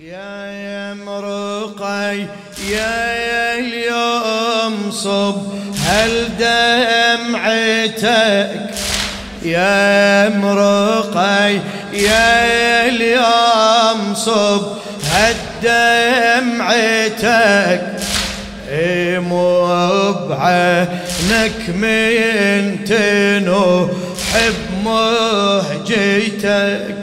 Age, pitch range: 30-49, 200-225 Hz